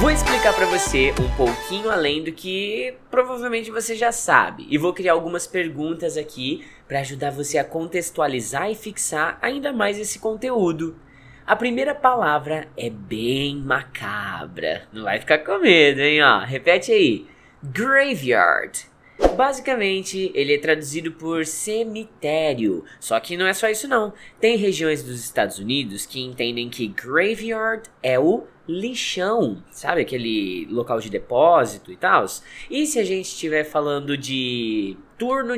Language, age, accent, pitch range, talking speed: Portuguese, 20-39, Brazilian, 145-230 Hz, 145 wpm